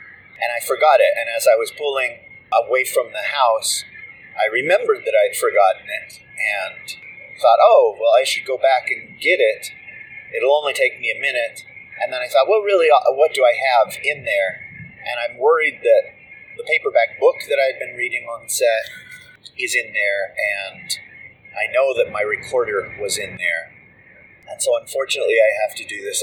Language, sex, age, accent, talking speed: English, male, 30-49, American, 190 wpm